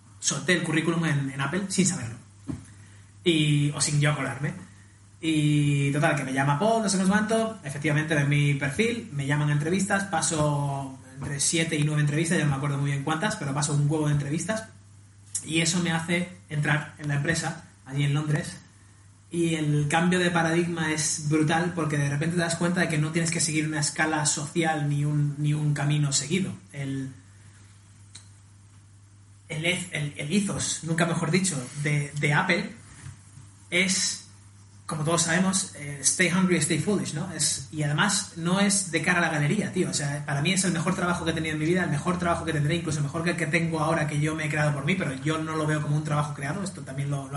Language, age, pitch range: Spanish, 20-39, 140-170 Hz